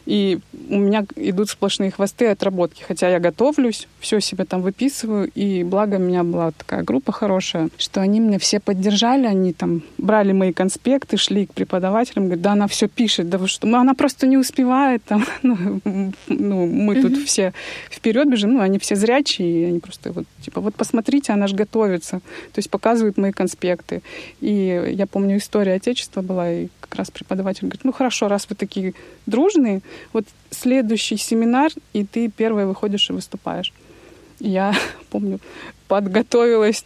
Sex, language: female, Russian